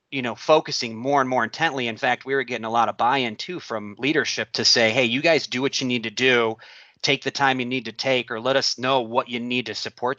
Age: 30-49